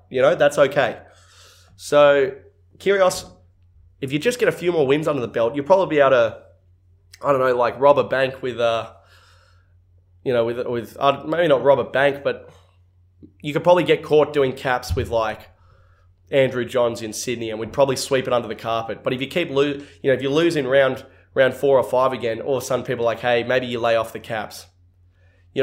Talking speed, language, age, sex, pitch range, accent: 220 wpm, English, 20-39, male, 110-155 Hz, Australian